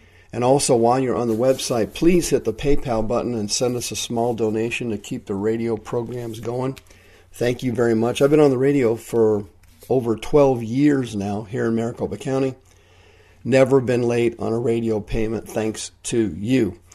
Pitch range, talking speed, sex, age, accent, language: 105-135 Hz, 185 wpm, male, 50-69, American, English